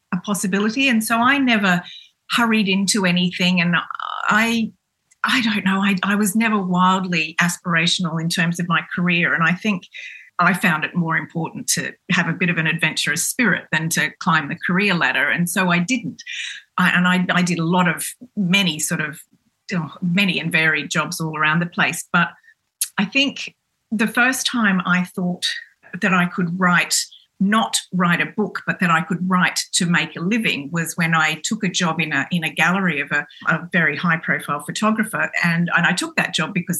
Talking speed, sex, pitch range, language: 195 wpm, female, 165-200 Hz, English